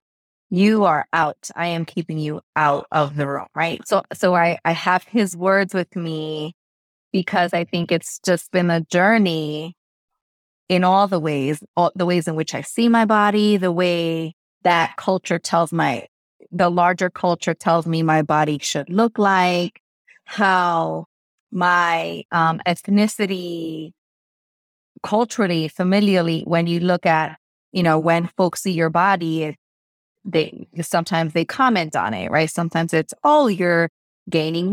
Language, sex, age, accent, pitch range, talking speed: English, female, 20-39, American, 155-185 Hz, 150 wpm